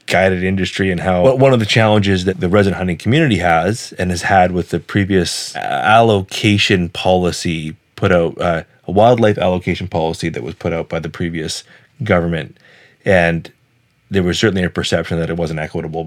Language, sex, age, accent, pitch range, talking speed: English, male, 30-49, American, 90-105 Hz, 175 wpm